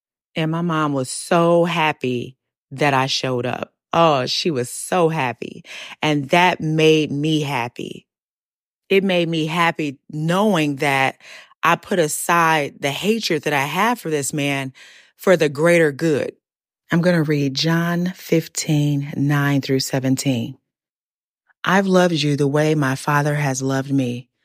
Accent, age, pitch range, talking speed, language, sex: American, 30-49, 140-170 Hz, 145 wpm, English, female